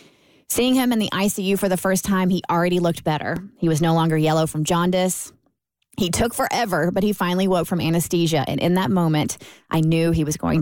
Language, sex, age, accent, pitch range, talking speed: English, female, 20-39, American, 155-185 Hz, 215 wpm